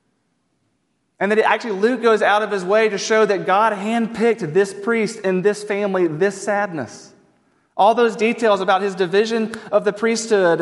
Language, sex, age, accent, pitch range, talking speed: English, male, 30-49, American, 185-220 Hz, 170 wpm